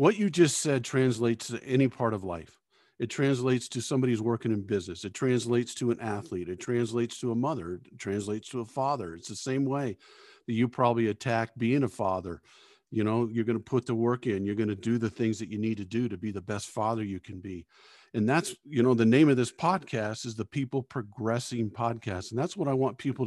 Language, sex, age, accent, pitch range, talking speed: English, male, 50-69, American, 110-130 Hz, 235 wpm